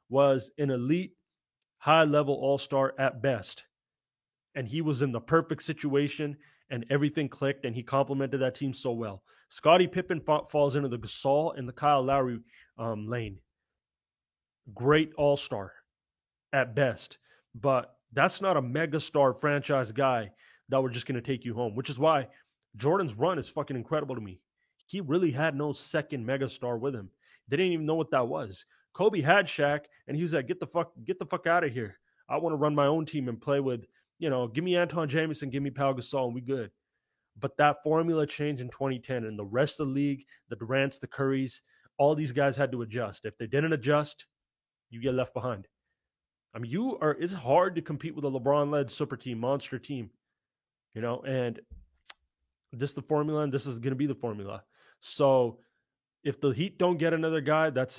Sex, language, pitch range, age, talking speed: male, English, 125-150 Hz, 30-49, 195 wpm